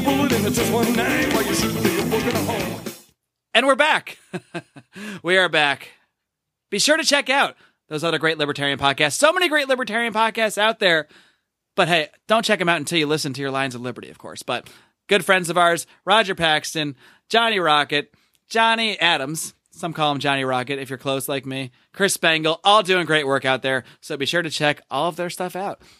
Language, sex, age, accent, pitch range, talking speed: English, male, 30-49, American, 140-200 Hz, 180 wpm